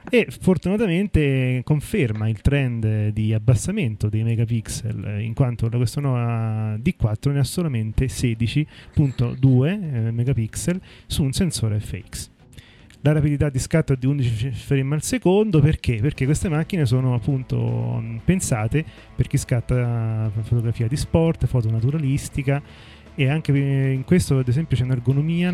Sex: male